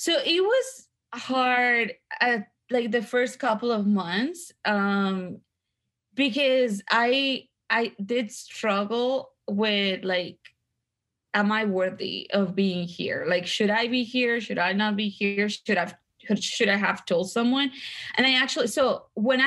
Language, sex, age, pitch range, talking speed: English, female, 20-39, 185-235 Hz, 145 wpm